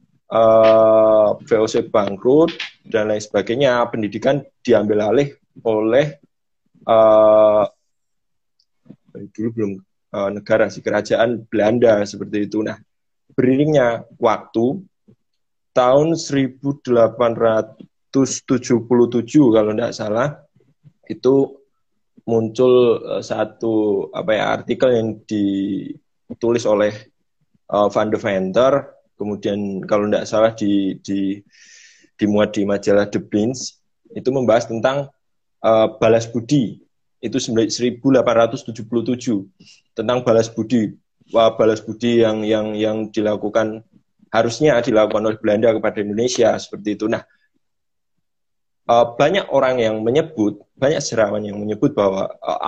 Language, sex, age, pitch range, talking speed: Indonesian, male, 20-39, 105-125 Hz, 100 wpm